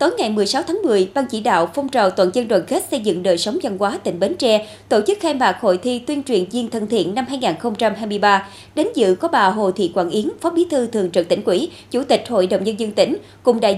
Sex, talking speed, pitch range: female, 260 wpm, 190-275 Hz